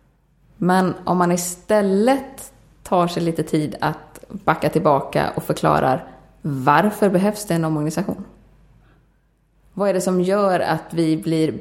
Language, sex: Swedish, female